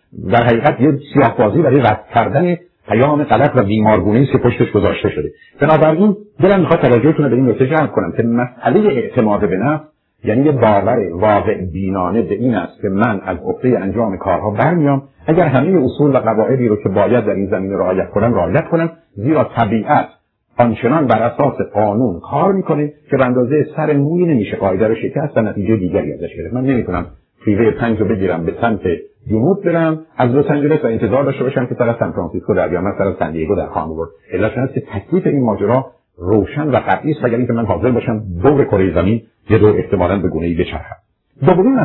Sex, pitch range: male, 105-150 Hz